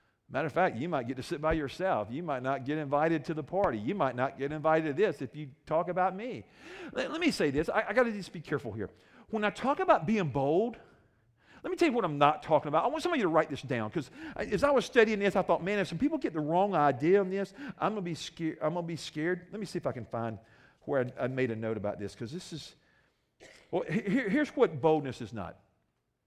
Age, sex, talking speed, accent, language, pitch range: 50-69, male, 260 wpm, American, English, 125-185 Hz